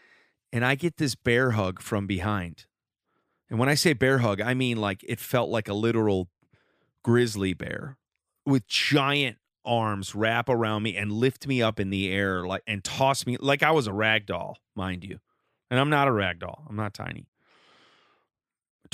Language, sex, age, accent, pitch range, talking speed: English, male, 30-49, American, 100-135 Hz, 185 wpm